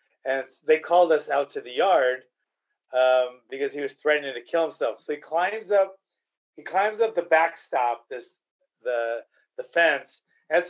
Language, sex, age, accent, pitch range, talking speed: English, male, 30-49, American, 150-220 Hz, 170 wpm